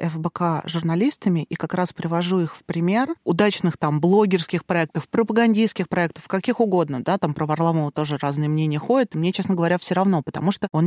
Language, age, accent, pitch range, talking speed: Russian, 30-49, native, 170-205 Hz, 180 wpm